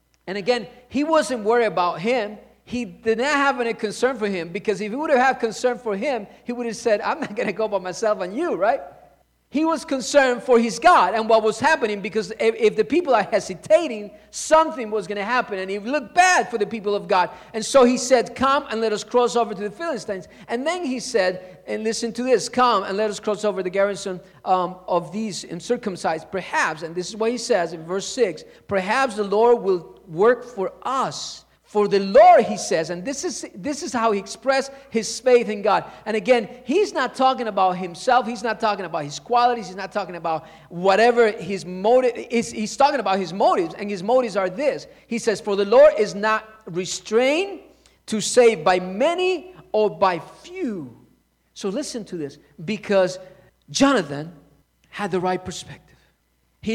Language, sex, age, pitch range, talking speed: English, male, 40-59, 195-255 Hz, 205 wpm